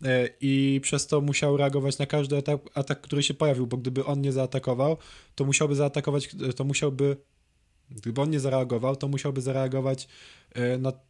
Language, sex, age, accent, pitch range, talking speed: Polish, male, 20-39, native, 120-140 Hz, 160 wpm